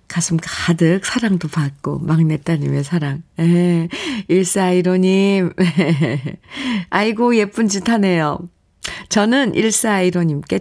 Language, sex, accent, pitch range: Korean, female, native, 160-220 Hz